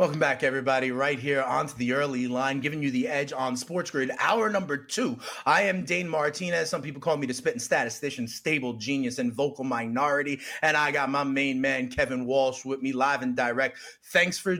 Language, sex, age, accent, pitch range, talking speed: English, male, 30-49, American, 140-200 Hz, 205 wpm